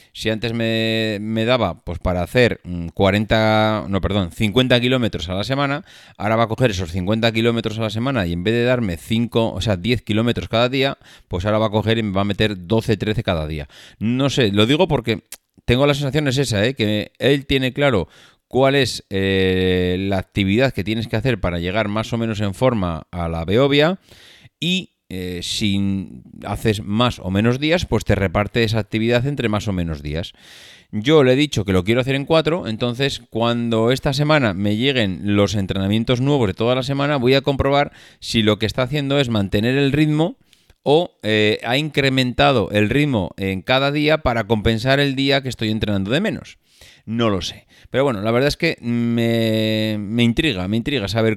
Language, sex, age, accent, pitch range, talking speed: Spanish, male, 30-49, Spanish, 105-135 Hz, 200 wpm